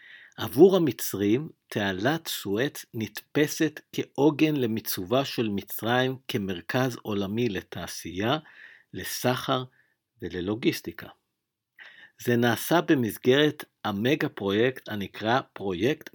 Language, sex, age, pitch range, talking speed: English, male, 50-69, 105-130 Hz, 80 wpm